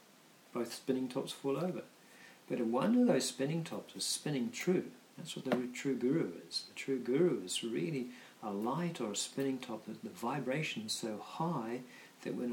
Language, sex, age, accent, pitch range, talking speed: English, male, 50-69, British, 125-180 Hz, 190 wpm